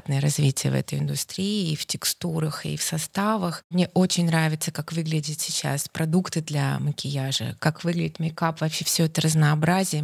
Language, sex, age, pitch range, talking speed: Russian, female, 20-39, 155-185 Hz, 155 wpm